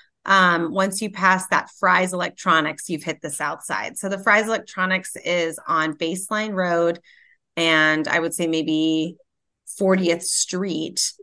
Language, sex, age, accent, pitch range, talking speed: English, female, 30-49, American, 165-190 Hz, 145 wpm